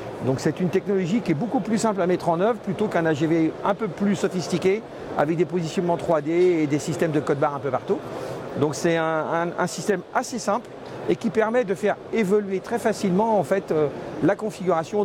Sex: male